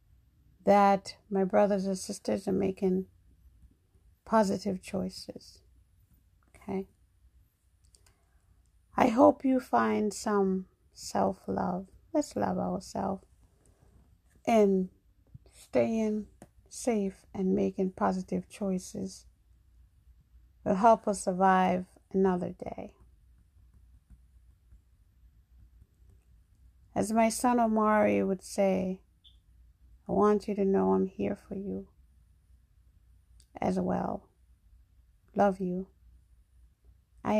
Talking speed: 85 wpm